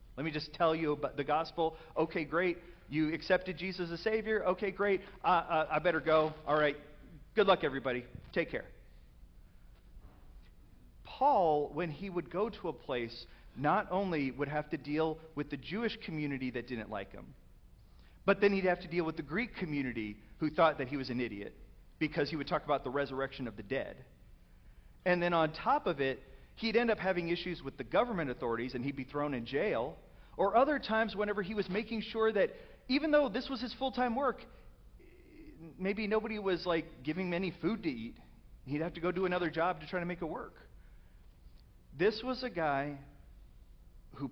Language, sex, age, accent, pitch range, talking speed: English, male, 40-59, American, 135-190 Hz, 195 wpm